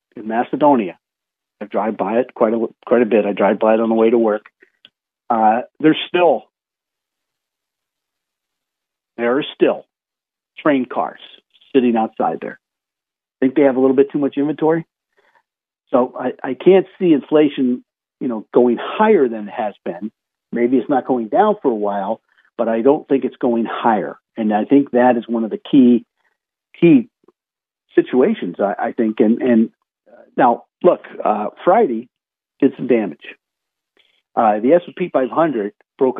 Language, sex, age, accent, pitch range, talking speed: English, male, 50-69, American, 110-140 Hz, 165 wpm